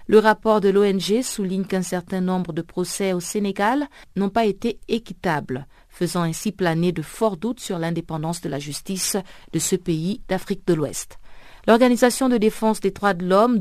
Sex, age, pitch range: female, 50-69, 170-225 Hz